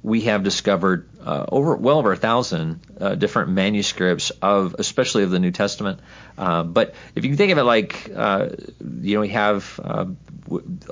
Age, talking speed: 40-59, 180 wpm